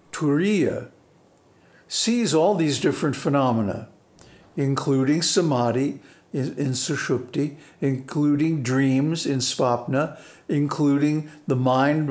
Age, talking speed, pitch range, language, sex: 60-79, 90 wpm, 130-160 Hz, English, male